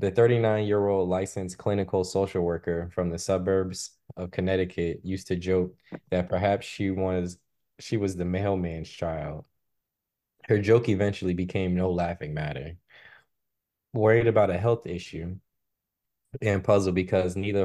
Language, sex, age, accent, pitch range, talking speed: English, male, 20-39, American, 90-105 Hz, 140 wpm